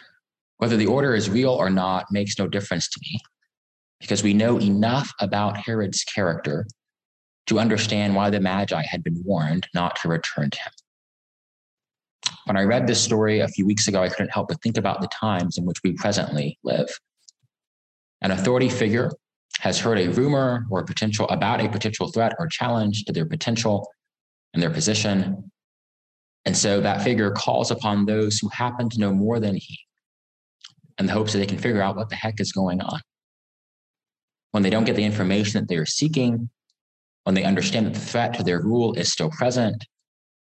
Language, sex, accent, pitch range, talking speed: English, male, American, 90-115 Hz, 185 wpm